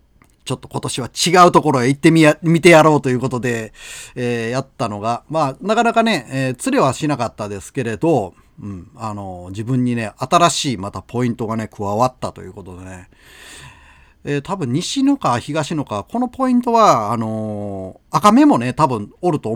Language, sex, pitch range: Japanese, male, 105-160 Hz